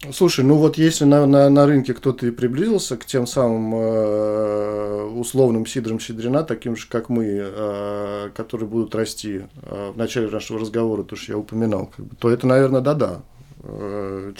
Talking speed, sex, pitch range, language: 165 wpm, male, 105-130 Hz, Russian